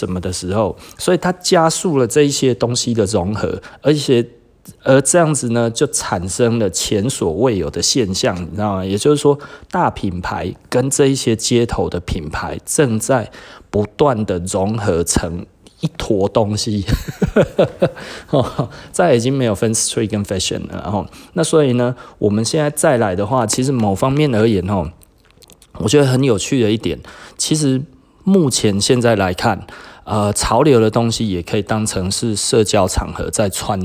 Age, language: 20-39, Chinese